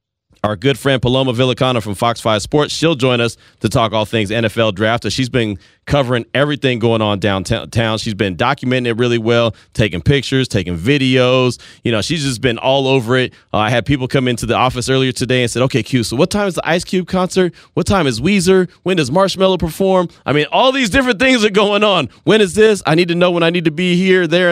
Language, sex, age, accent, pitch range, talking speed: English, male, 30-49, American, 115-155 Hz, 235 wpm